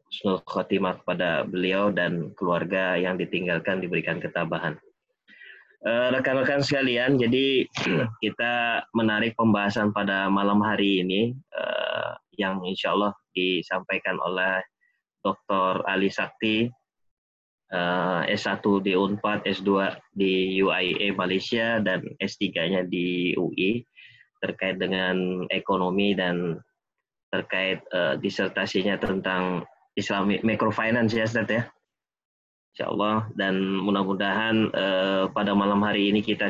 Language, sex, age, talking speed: Indonesian, male, 20-39, 100 wpm